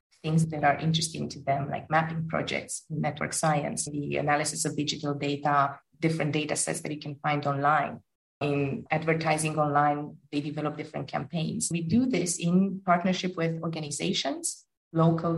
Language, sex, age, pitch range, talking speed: English, female, 30-49, 155-185 Hz, 150 wpm